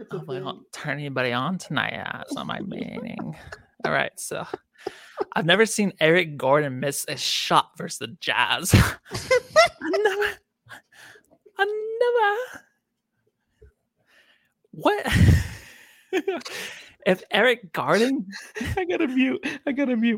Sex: male